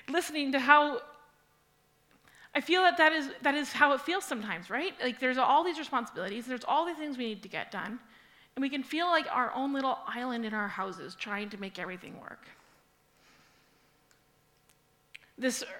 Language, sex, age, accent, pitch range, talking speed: English, female, 30-49, American, 230-295 Hz, 175 wpm